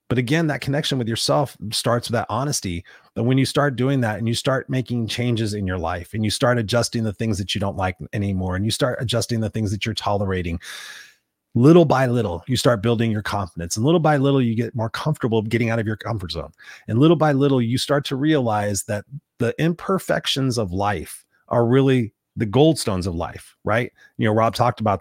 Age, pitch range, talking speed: 30-49, 105-135 Hz, 220 wpm